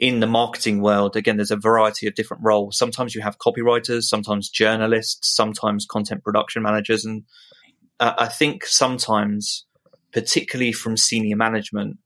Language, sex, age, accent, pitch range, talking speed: English, male, 20-39, British, 105-120 Hz, 150 wpm